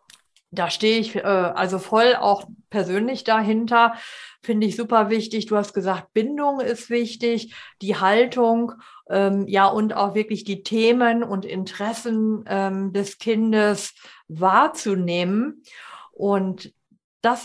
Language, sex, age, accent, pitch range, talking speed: German, female, 50-69, German, 195-235 Hz, 125 wpm